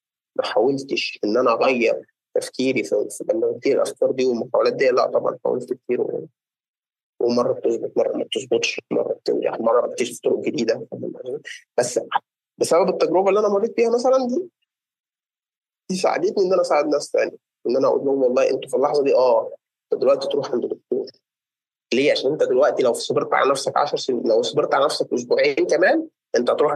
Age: 20-39